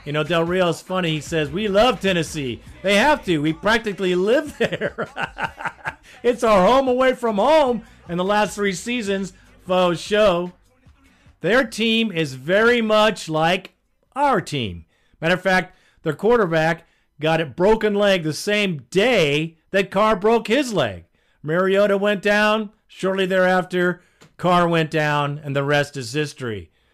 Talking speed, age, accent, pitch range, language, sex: 155 wpm, 50-69, American, 145-195 Hz, English, male